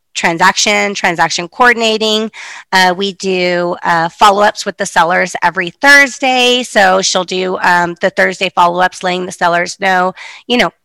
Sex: female